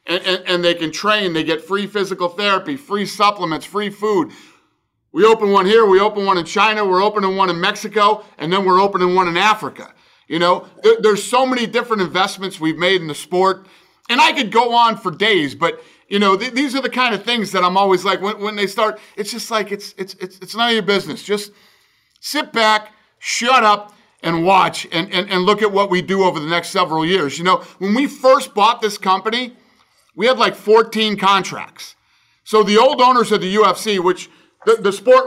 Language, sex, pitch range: English, male, 185-220 Hz